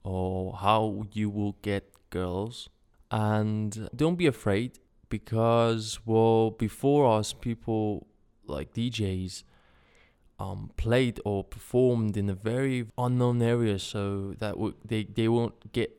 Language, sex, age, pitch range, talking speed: English, male, 20-39, 100-115 Hz, 125 wpm